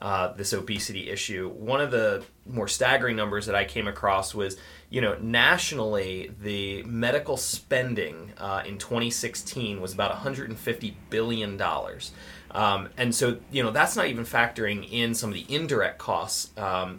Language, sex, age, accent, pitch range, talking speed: English, male, 20-39, American, 100-120 Hz, 155 wpm